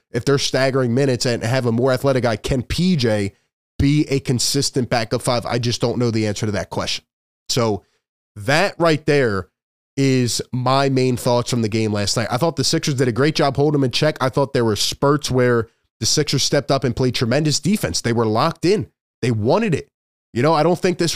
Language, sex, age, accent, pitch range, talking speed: English, male, 20-39, American, 120-145 Hz, 220 wpm